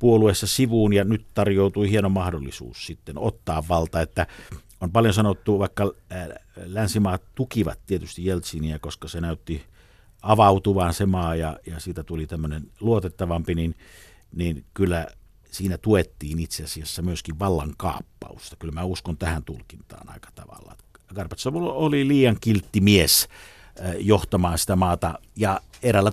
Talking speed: 135 wpm